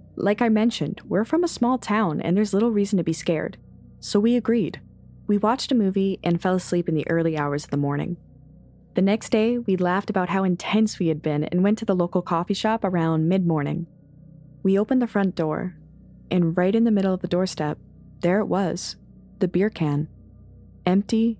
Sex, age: female, 20-39